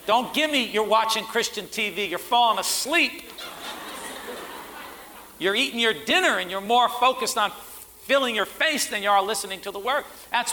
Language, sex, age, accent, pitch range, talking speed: English, male, 50-69, American, 190-255 Hz, 170 wpm